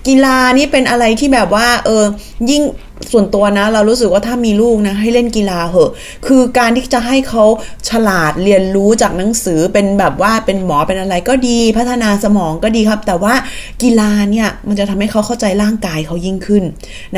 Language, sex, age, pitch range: Thai, female, 20-39, 185-240 Hz